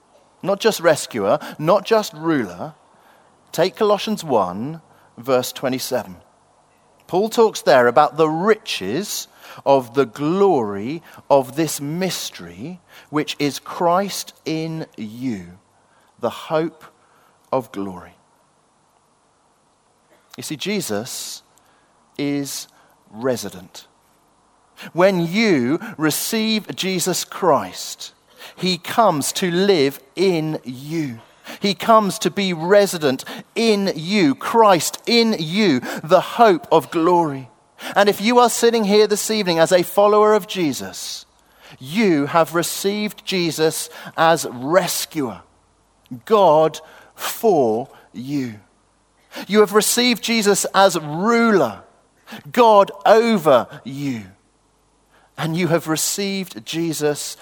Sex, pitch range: male, 140-205 Hz